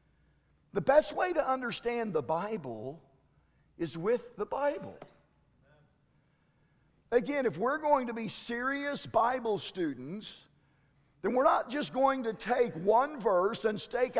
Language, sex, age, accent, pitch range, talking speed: English, male, 50-69, American, 210-275 Hz, 130 wpm